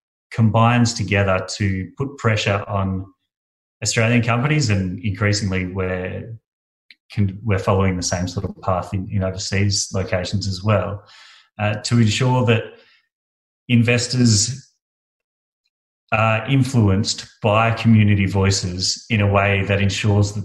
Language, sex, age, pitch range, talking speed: English, male, 30-49, 95-115 Hz, 120 wpm